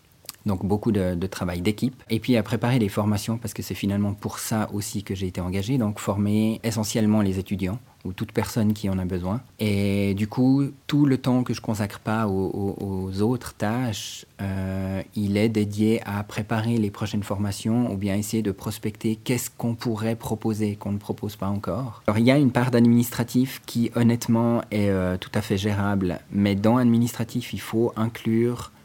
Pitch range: 100-115 Hz